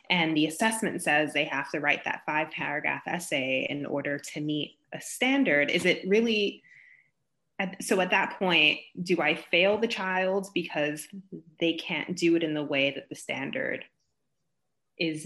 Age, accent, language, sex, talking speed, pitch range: 20-39, American, English, female, 165 wpm, 150-195 Hz